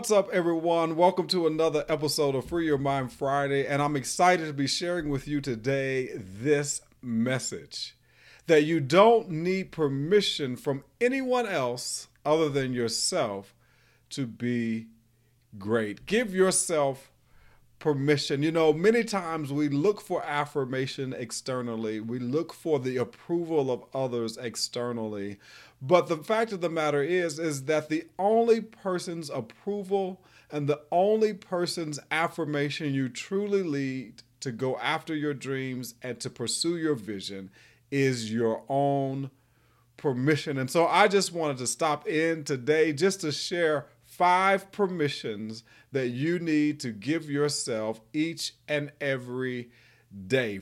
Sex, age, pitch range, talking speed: male, 40-59, 125-170 Hz, 140 wpm